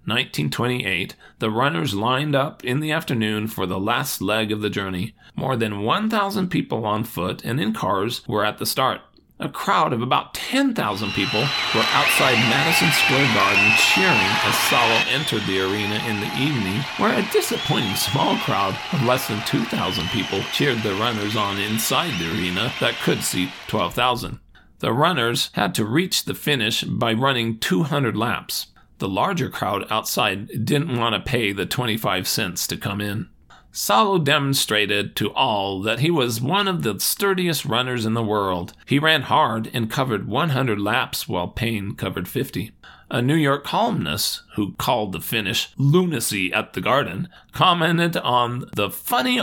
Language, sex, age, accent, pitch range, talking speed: English, male, 40-59, American, 105-140 Hz, 165 wpm